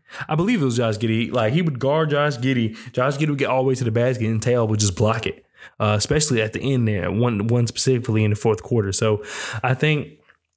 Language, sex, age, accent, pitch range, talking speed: English, male, 20-39, American, 110-130 Hz, 250 wpm